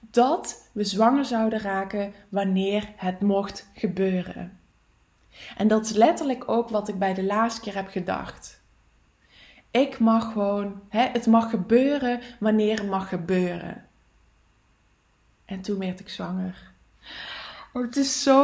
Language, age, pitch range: English, 20-39, 195-235 Hz